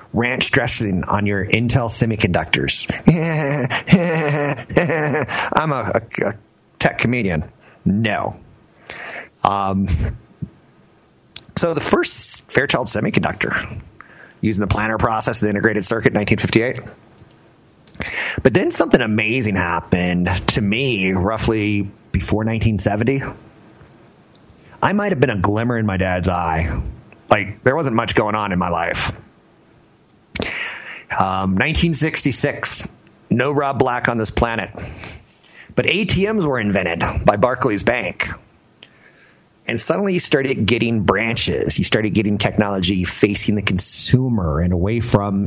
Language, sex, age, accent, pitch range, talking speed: English, male, 30-49, American, 95-120 Hz, 115 wpm